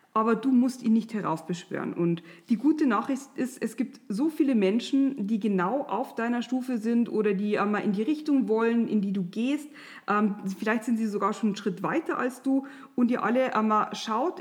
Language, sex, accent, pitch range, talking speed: German, female, German, 205-260 Hz, 200 wpm